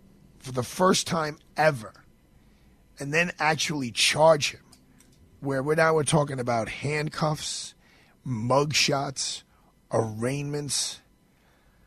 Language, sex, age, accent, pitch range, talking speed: English, male, 40-59, American, 125-155 Hz, 100 wpm